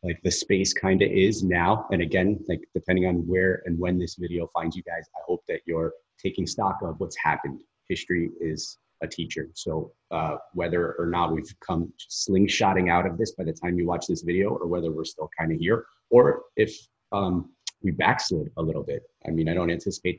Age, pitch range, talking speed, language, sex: 30-49, 85-100 Hz, 210 wpm, English, male